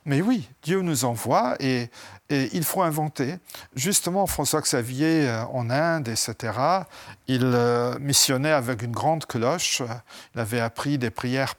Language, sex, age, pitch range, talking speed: French, male, 50-69, 115-155 Hz, 135 wpm